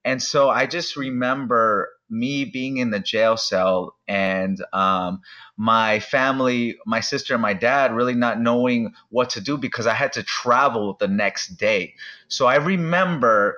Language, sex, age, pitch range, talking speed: English, male, 30-49, 125-175 Hz, 165 wpm